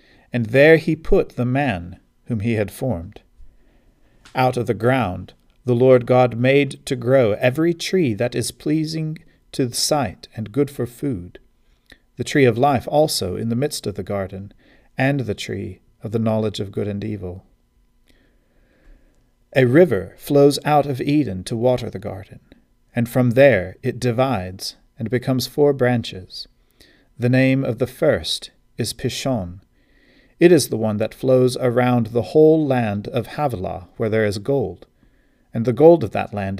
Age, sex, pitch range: 40-59, male, 105-135 Hz